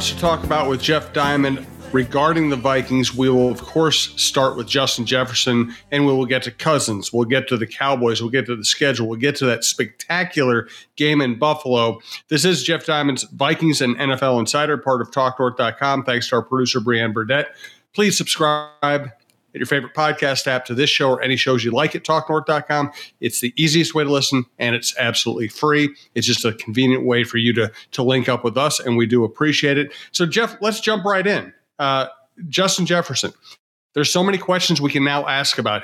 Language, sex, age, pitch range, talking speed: English, male, 40-59, 120-150 Hz, 205 wpm